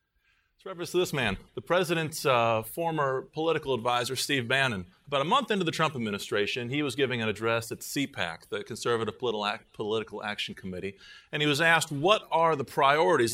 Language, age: English, 30-49